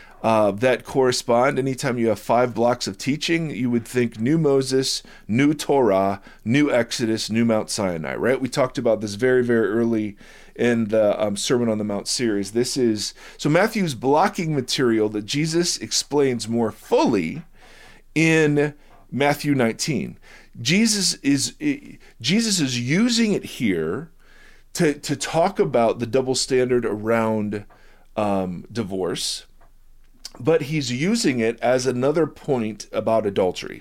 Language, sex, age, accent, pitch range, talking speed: English, male, 40-59, American, 110-145 Hz, 140 wpm